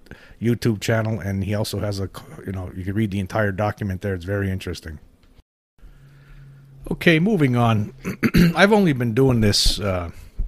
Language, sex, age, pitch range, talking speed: English, male, 50-69, 95-110 Hz, 160 wpm